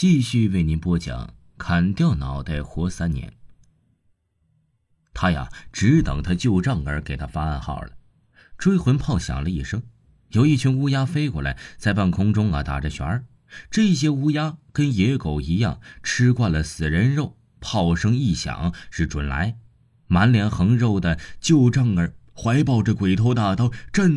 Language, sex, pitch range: Chinese, male, 85-130 Hz